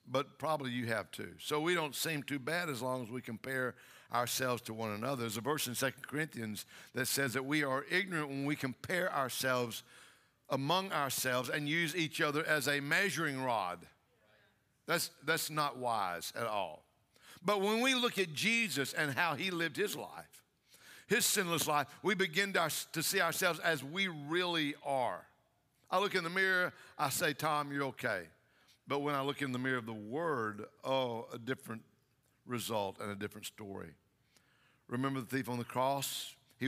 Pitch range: 125-165 Hz